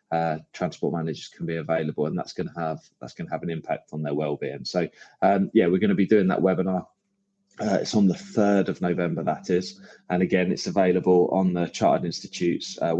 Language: English